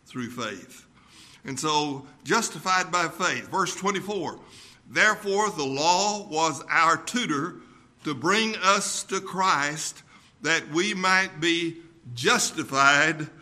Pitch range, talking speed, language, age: 145-190 Hz, 110 wpm, English, 60-79